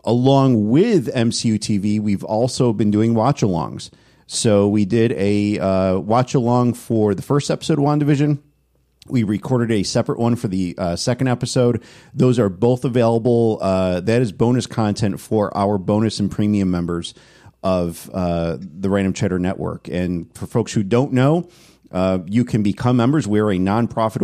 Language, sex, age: English, male, 40-59